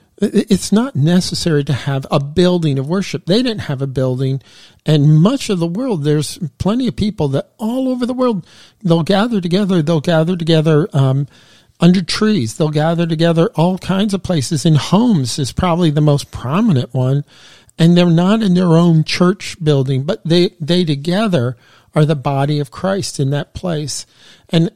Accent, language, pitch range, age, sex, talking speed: American, English, 145-185 Hz, 50-69, male, 175 wpm